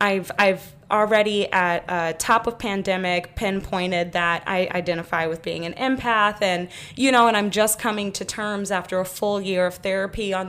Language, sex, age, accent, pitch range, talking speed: English, female, 10-29, American, 180-225 Hz, 185 wpm